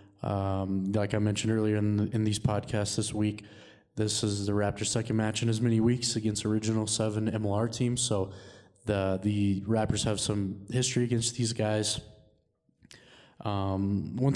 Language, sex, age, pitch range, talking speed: English, male, 20-39, 100-115 Hz, 165 wpm